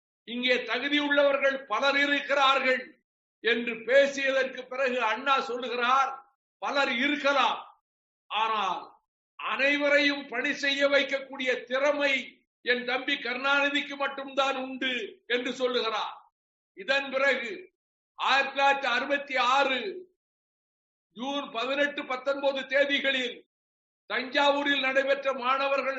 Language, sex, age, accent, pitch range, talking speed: Tamil, male, 60-79, native, 255-280 Hz, 70 wpm